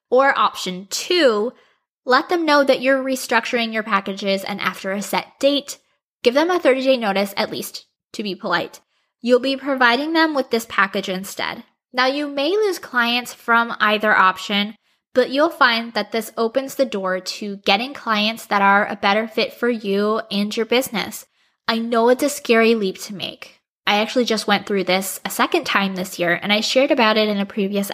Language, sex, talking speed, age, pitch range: English, female, 195 wpm, 10-29, 200-255 Hz